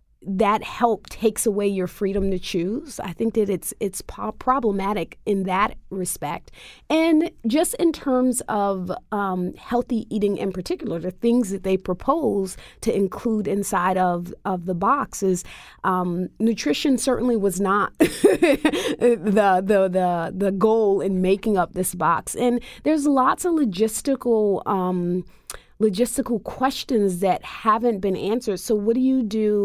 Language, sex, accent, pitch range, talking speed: English, female, American, 190-245 Hz, 145 wpm